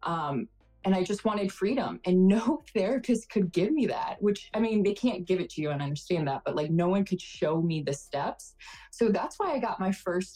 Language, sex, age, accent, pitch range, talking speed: English, female, 20-39, American, 155-200 Hz, 245 wpm